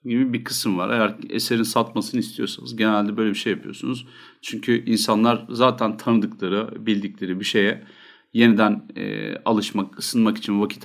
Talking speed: 145 wpm